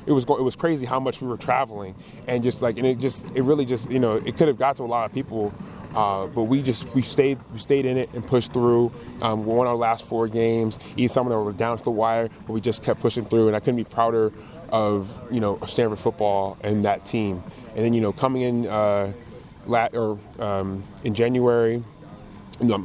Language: English